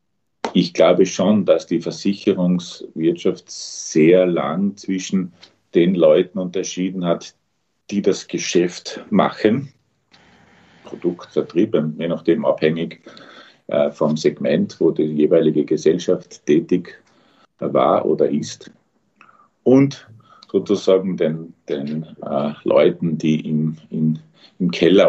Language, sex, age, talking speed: German, male, 50-69, 100 wpm